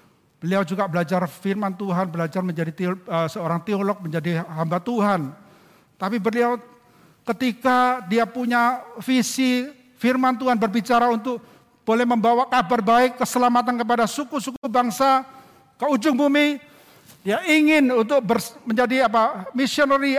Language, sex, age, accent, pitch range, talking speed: Indonesian, male, 50-69, native, 170-245 Hz, 120 wpm